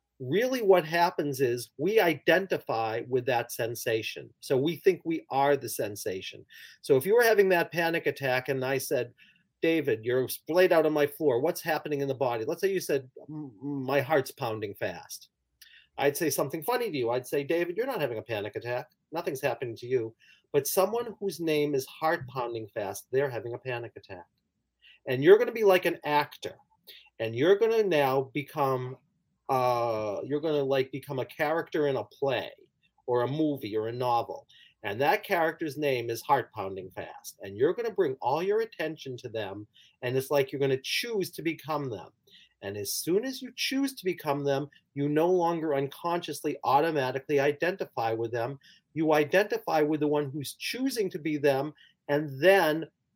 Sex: male